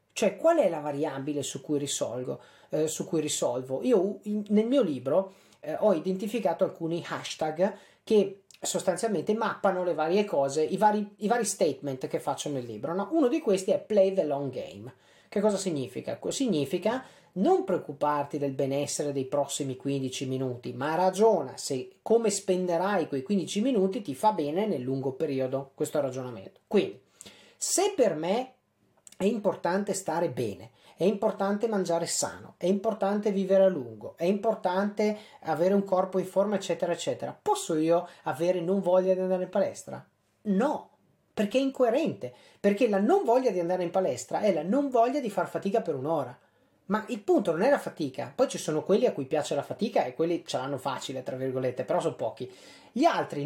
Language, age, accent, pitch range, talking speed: Italian, 30-49, native, 150-215 Hz, 170 wpm